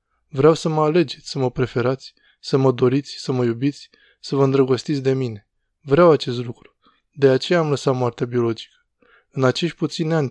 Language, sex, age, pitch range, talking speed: Romanian, male, 20-39, 125-145 Hz, 180 wpm